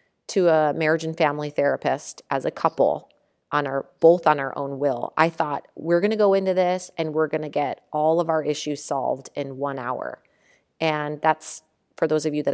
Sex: female